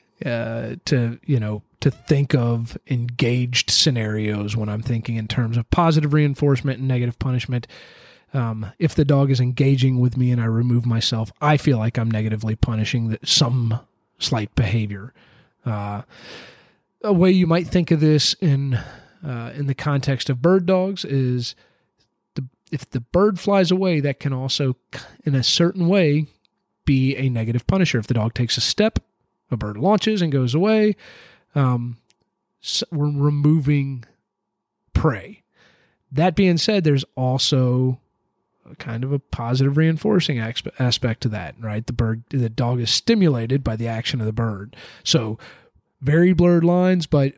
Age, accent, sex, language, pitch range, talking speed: 30-49, American, male, English, 120-155 Hz, 155 wpm